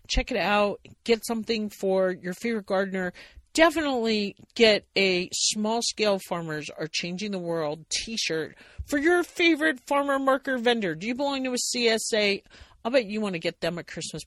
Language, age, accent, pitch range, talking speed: English, 50-69, American, 165-220 Hz, 175 wpm